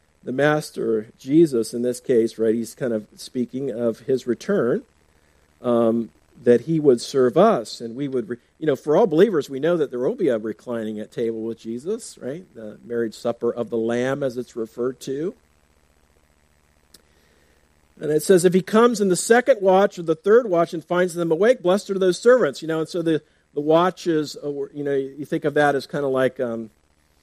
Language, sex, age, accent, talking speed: English, male, 50-69, American, 205 wpm